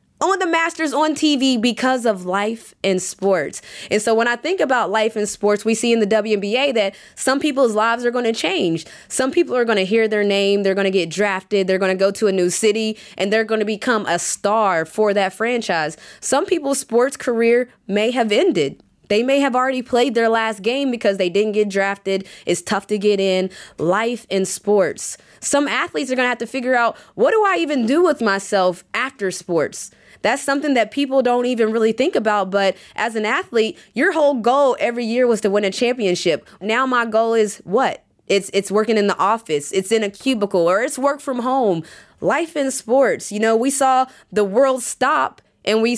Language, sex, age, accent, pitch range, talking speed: English, female, 20-39, American, 195-255 Hz, 215 wpm